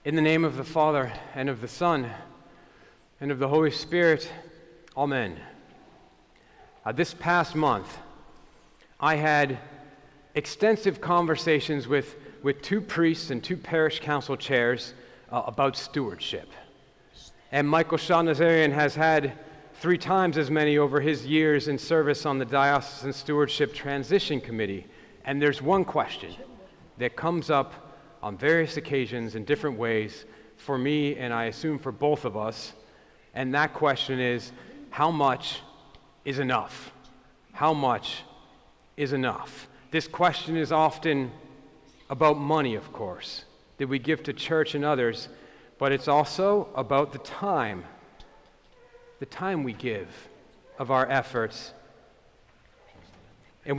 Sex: male